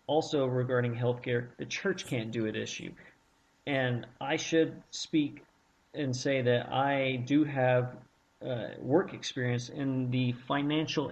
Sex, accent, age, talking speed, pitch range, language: male, American, 40-59, 135 wpm, 115-140 Hz, English